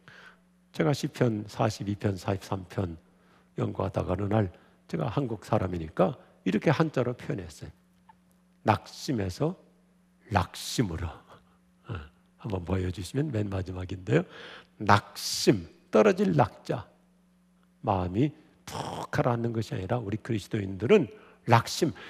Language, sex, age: Korean, male, 50-69